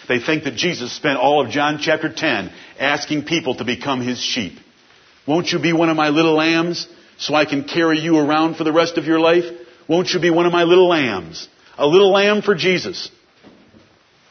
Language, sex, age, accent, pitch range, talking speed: English, male, 50-69, American, 160-225 Hz, 205 wpm